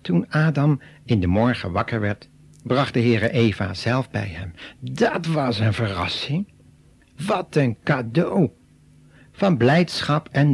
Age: 60-79